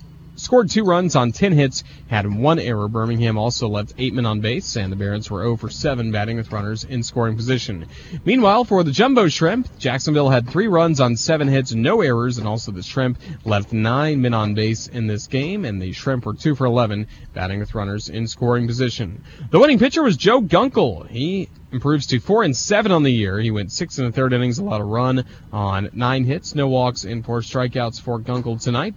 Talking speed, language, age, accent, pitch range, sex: 215 wpm, English, 30-49, American, 110-140 Hz, male